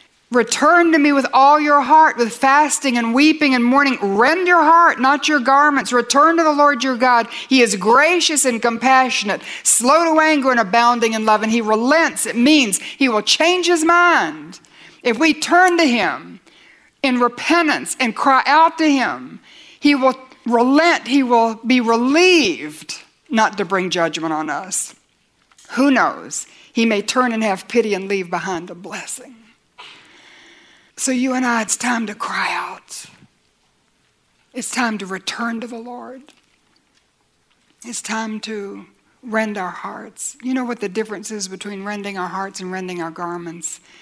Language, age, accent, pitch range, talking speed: English, 60-79, American, 215-280 Hz, 165 wpm